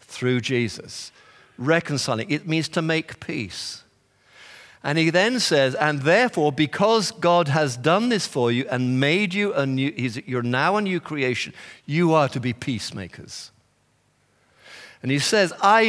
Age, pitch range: 50-69, 135-175 Hz